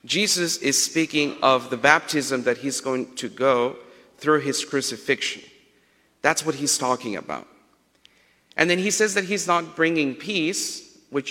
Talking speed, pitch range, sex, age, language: 155 wpm, 125-155 Hz, male, 50-69, English